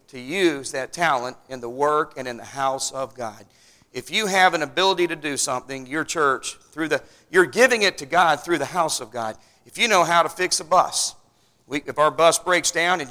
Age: 40-59